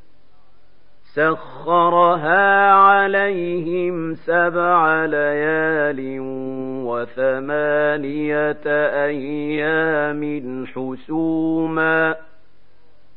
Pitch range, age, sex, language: 130-165 Hz, 50-69, male, Arabic